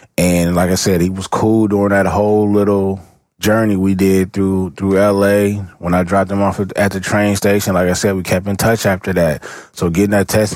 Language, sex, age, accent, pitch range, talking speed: English, male, 20-39, American, 95-105 Hz, 220 wpm